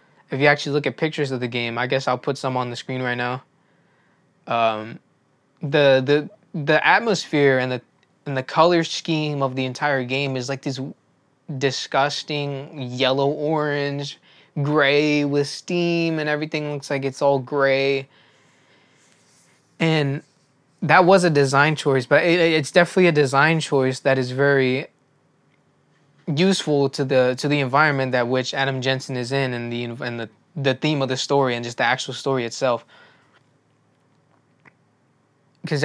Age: 20-39